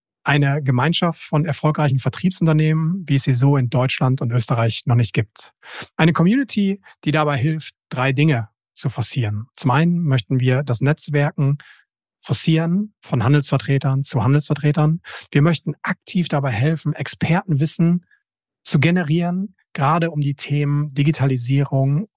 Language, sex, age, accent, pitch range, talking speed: German, male, 40-59, German, 135-165 Hz, 135 wpm